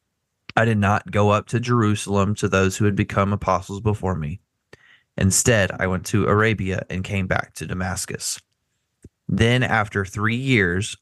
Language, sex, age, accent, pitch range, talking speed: English, male, 20-39, American, 95-115 Hz, 160 wpm